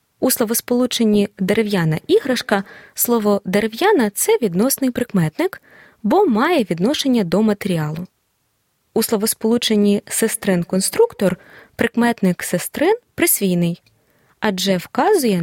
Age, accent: 20-39, native